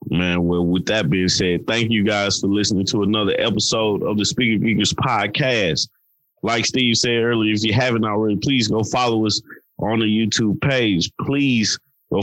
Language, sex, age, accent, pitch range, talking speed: English, male, 20-39, American, 95-115 Hz, 180 wpm